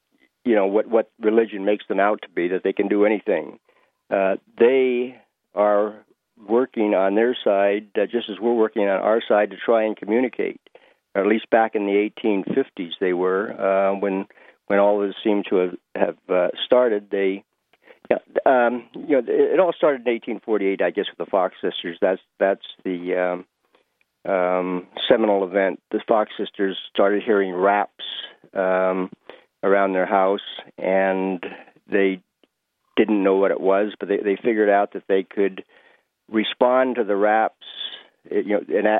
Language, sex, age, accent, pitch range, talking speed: English, male, 60-79, American, 95-110 Hz, 170 wpm